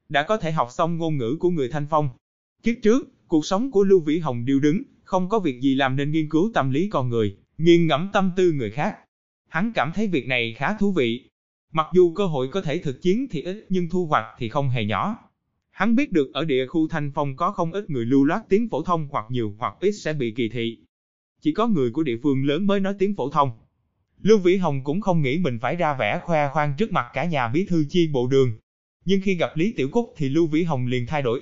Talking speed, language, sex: 260 wpm, Vietnamese, male